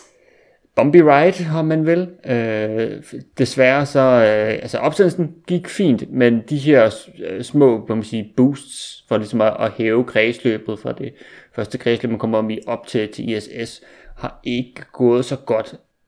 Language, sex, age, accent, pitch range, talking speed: Danish, male, 30-49, native, 110-135 Hz, 150 wpm